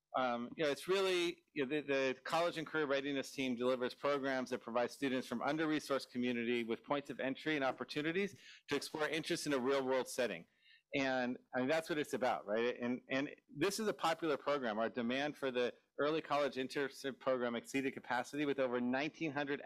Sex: male